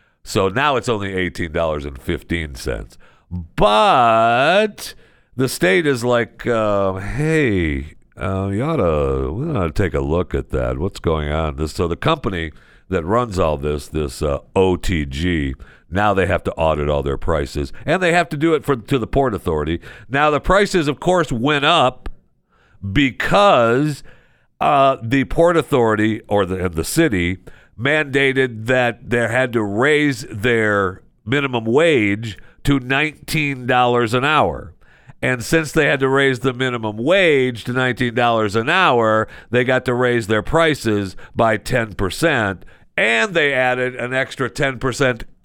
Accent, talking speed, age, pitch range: American, 150 wpm, 50-69, 95-135 Hz